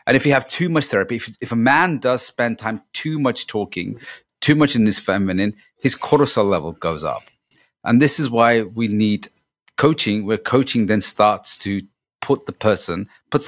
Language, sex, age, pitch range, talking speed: English, male, 30-49, 100-120 Hz, 190 wpm